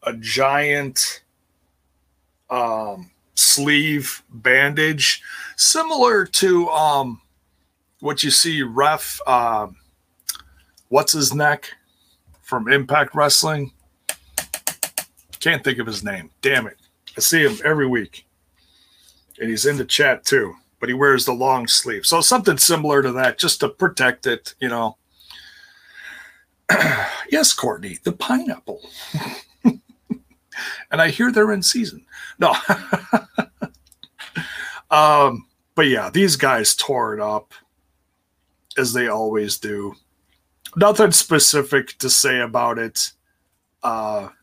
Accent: American